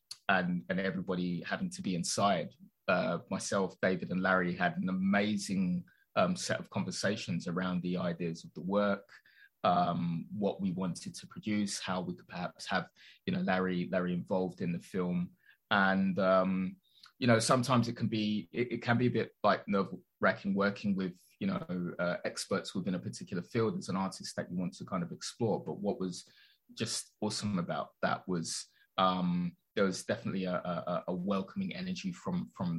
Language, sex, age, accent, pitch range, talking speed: English, male, 20-39, British, 90-120 Hz, 180 wpm